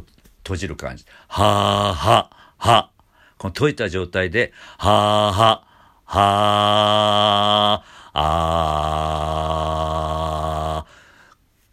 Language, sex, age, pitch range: Japanese, male, 50-69, 70-105 Hz